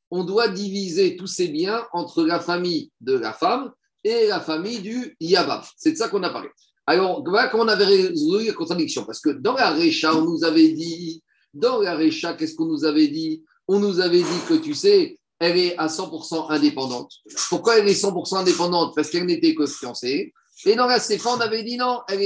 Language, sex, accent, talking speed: French, male, French, 210 wpm